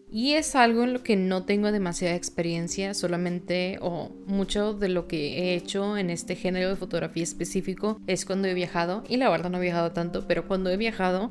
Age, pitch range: 20-39, 175-200 Hz